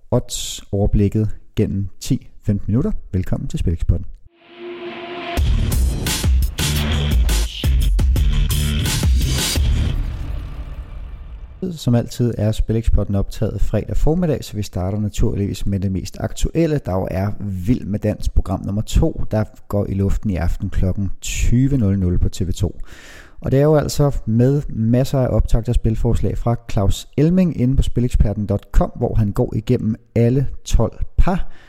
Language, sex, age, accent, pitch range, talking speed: Danish, male, 30-49, native, 95-120 Hz, 125 wpm